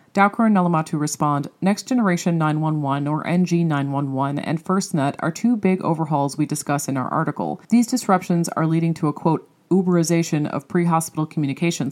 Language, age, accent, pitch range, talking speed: English, 40-59, American, 150-180 Hz, 160 wpm